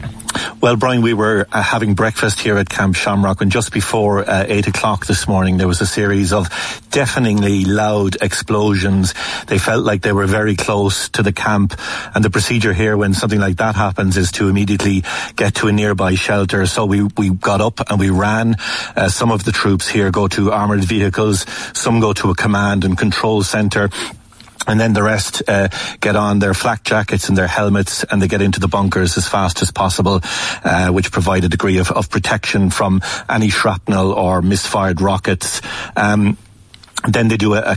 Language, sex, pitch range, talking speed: English, male, 95-105 Hz, 190 wpm